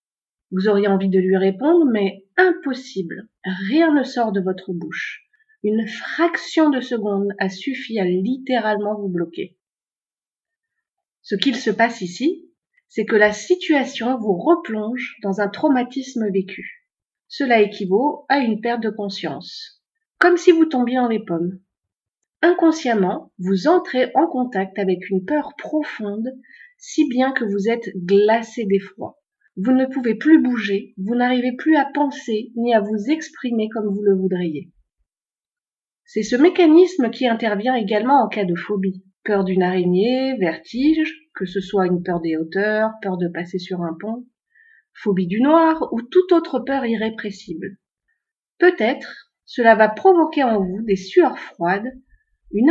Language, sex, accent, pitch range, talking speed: French, female, French, 195-290 Hz, 150 wpm